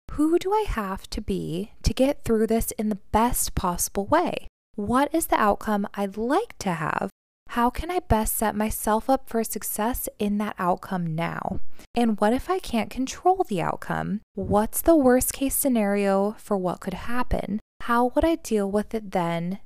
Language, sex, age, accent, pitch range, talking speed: English, female, 20-39, American, 195-255 Hz, 185 wpm